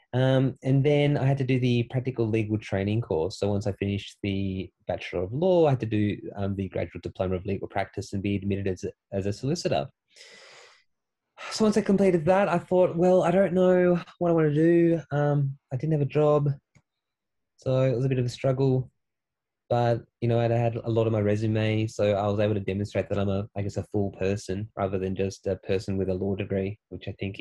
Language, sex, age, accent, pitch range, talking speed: English, male, 20-39, Australian, 100-130 Hz, 225 wpm